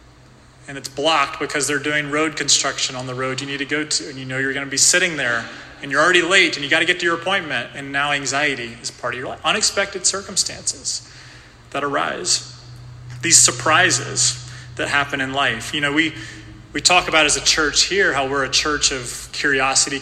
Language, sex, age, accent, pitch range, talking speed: English, male, 30-49, American, 130-150 Hz, 215 wpm